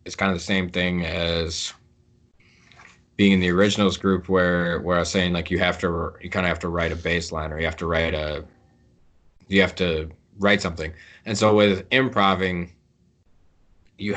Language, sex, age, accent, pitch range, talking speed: English, male, 20-39, American, 85-100 Hz, 195 wpm